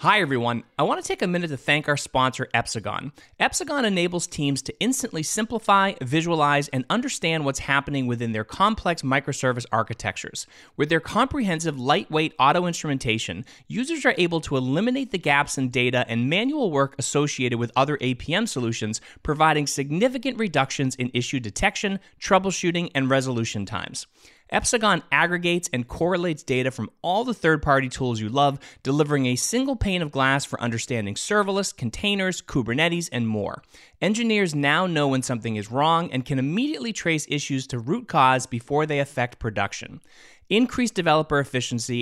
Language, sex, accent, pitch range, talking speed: English, male, American, 120-170 Hz, 155 wpm